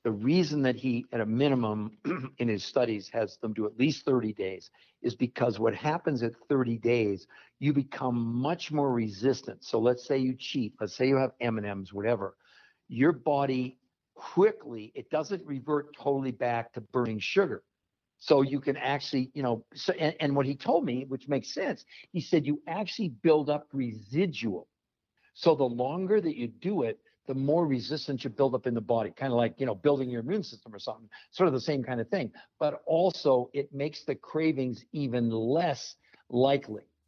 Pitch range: 115-145 Hz